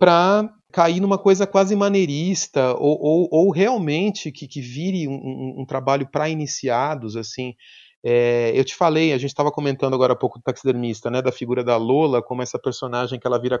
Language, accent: Portuguese, Brazilian